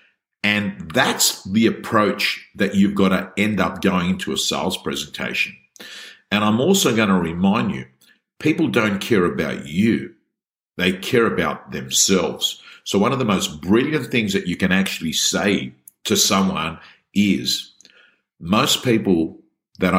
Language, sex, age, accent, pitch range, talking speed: English, male, 50-69, Australian, 85-95 Hz, 145 wpm